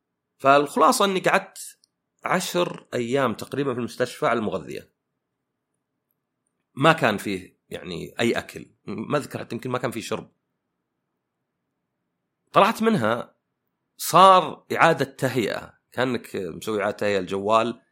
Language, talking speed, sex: Arabic, 110 wpm, male